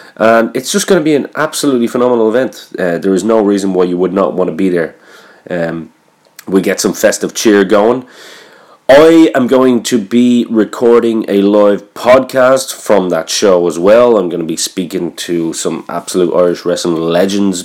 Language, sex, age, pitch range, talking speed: English, male, 30-49, 90-115 Hz, 185 wpm